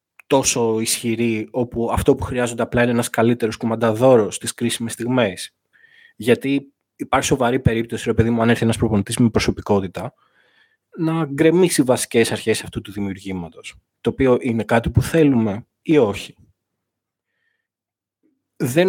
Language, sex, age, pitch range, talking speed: Greek, male, 20-39, 110-145 Hz, 135 wpm